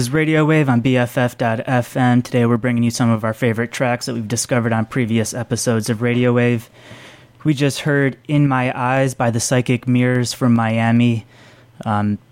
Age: 20-39